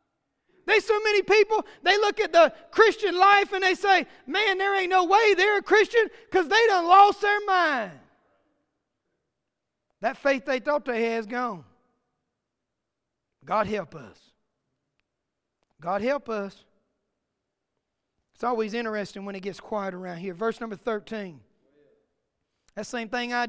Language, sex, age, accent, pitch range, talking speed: English, male, 30-49, American, 230-360 Hz, 145 wpm